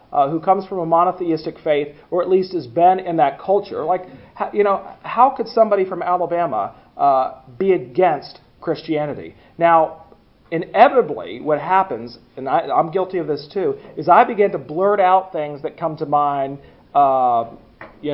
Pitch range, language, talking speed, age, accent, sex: 150-190 Hz, English, 170 wpm, 40-59, American, male